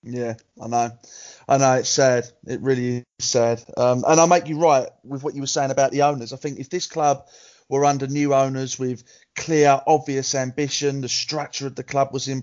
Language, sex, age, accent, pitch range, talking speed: English, male, 30-49, British, 135-205 Hz, 215 wpm